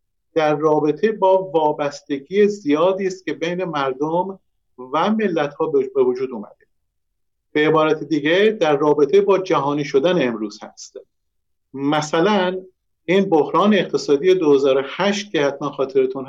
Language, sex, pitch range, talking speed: Persian, male, 145-200 Hz, 120 wpm